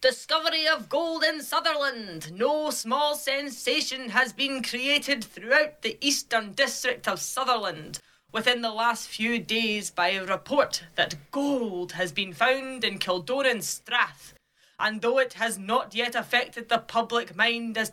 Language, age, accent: English, 20-39, British